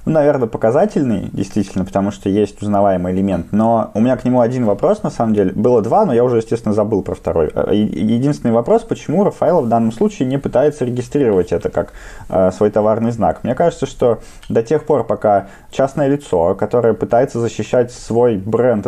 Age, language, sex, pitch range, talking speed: 20-39, Russian, male, 100-125 Hz, 180 wpm